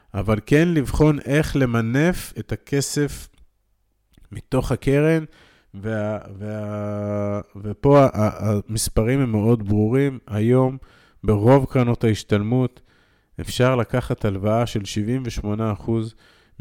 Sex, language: male, Hebrew